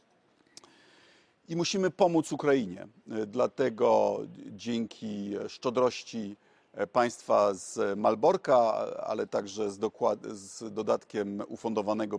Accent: native